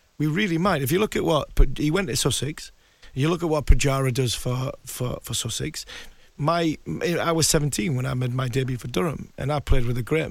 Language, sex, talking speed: English, male, 225 wpm